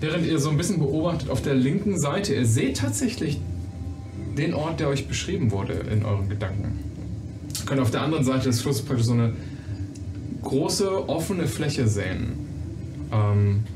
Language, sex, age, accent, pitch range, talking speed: German, male, 10-29, German, 105-130 Hz, 165 wpm